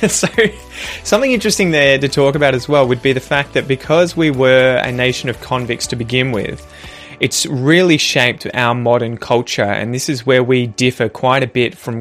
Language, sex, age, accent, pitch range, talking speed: English, male, 20-39, Australian, 115-135 Hz, 200 wpm